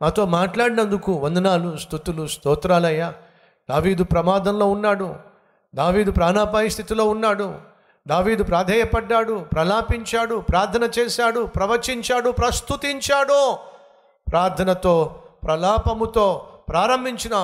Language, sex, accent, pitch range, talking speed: Telugu, male, native, 175-240 Hz, 75 wpm